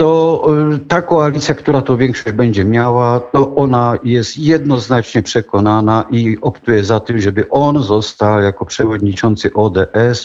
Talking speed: 135 wpm